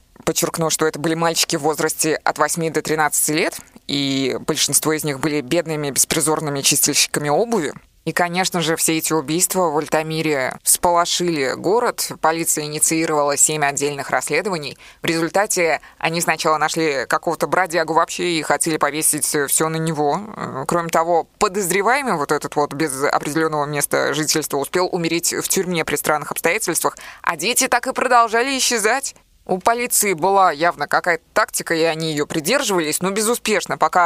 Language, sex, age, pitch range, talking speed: Russian, female, 20-39, 150-180 Hz, 150 wpm